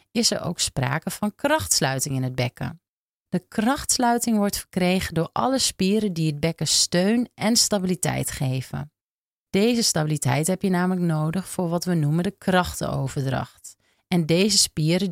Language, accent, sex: Dutch, Dutch, female